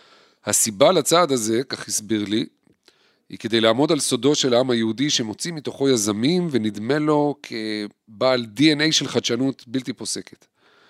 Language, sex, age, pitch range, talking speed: Hebrew, male, 40-59, 110-145 Hz, 140 wpm